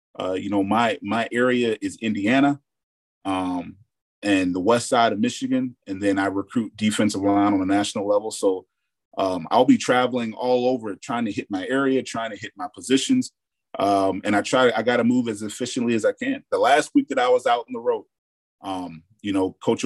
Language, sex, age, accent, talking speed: English, male, 30-49, American, 210 wpm